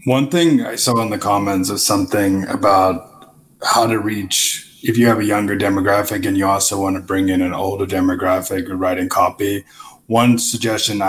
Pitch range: 95-120 Hz